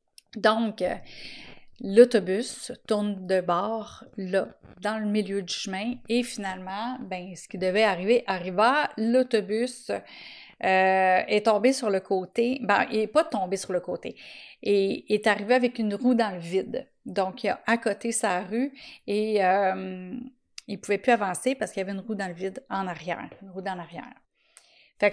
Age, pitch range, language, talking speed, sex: 30-49, 190-245 Hz, French, 170 wpm, female